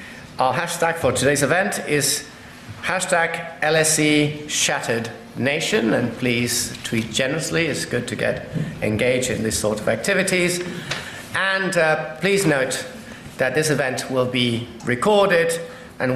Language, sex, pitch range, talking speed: English, male, 125-170 Hz, 125 wpm